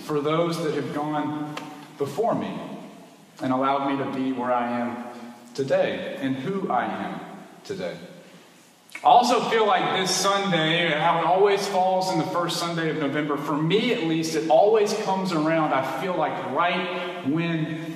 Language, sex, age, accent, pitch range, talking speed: English, male, 40-59, American, 150-195 Hz, 165 wpm